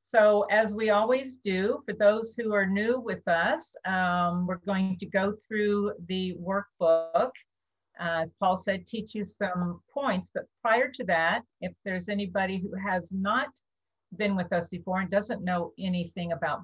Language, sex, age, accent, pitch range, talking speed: English, female, 50-69, American, 170-210 Hz, 170 wpm